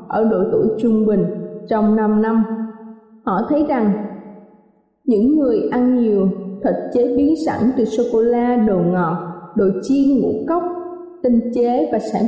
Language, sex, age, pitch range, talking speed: Vietnamese, female, 20-39, 215-275 Hz, 150 wpm